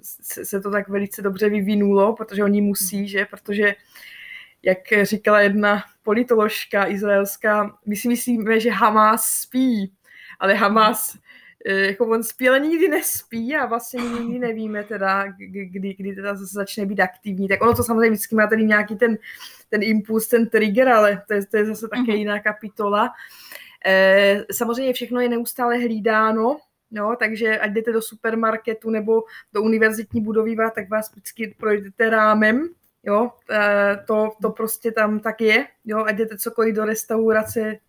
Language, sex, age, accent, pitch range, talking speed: Czech, female, 20-39, native, 205-225 Hz, 150 wpm